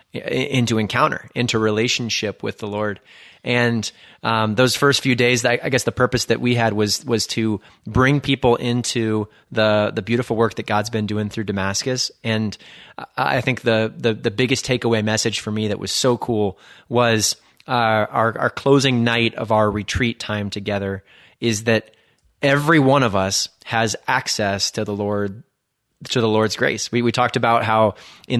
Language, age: English, 30-49